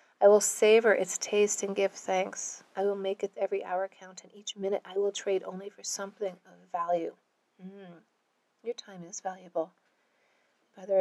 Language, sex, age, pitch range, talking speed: English, female, 30-49, 180-200 Hz, 175 wpm